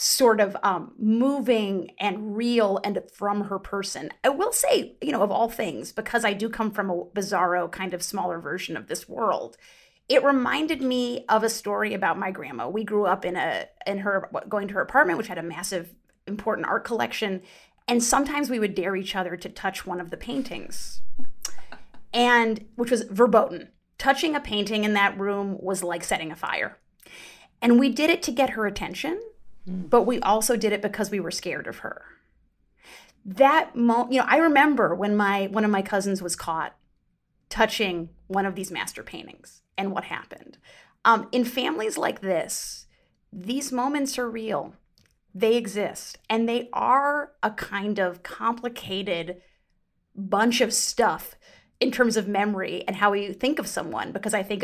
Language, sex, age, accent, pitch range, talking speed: English, female, 30-49, American, 190-245 Hz, 180 wpm